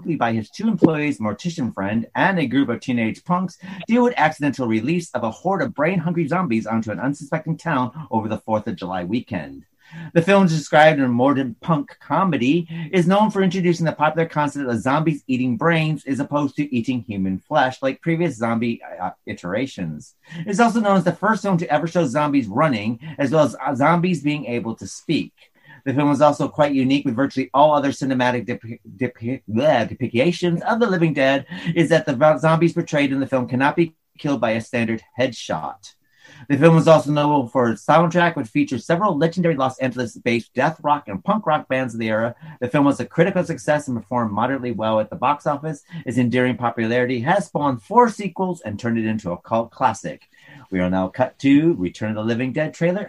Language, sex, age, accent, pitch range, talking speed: English, male, 30-49, American, 120-165 Hz, 200 wpm